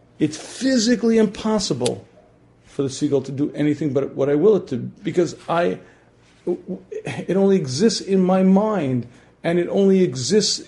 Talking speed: 150 wpm